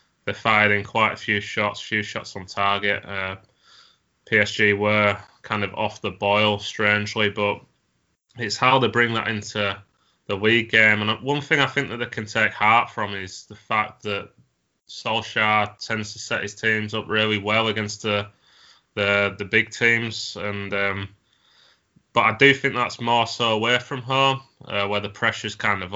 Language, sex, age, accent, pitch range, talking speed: English, male, 20-39, British, 100-115 Hz, 180 wpm